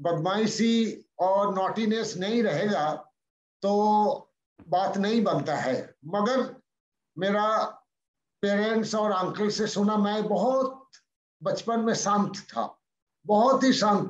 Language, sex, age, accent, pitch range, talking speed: Hindi, male, 60-79, native, 175-215 Hz, 110 wpm